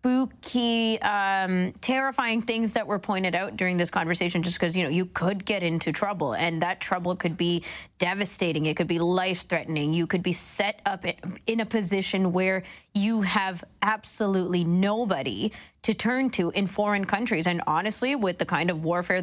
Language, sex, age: English, female, 20-39